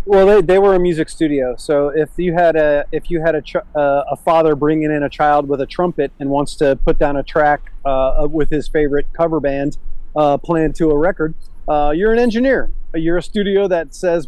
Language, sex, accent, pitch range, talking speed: English, male, American, 145-180 Hz, 225 wpm